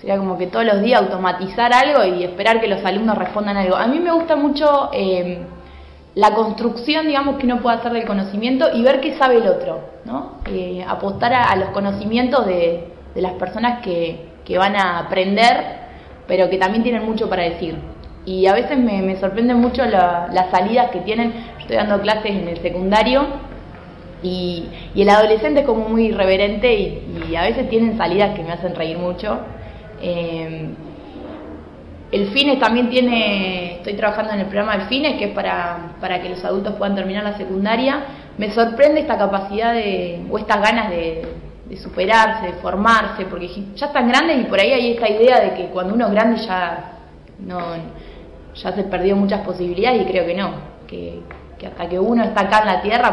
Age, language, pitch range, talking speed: 20-39, Spanish, 180-230 Hz, 190 wpm